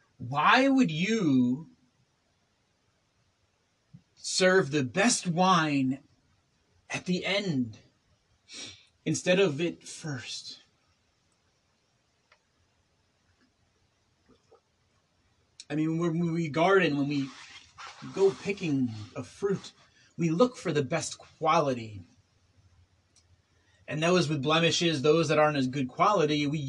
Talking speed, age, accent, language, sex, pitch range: 95 wpm, 30-49, American, English, male, 105-170 Hz